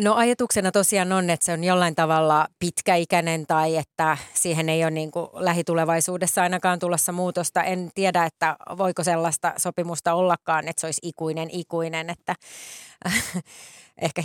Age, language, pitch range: 30-49, Finnish, 165-180 Hz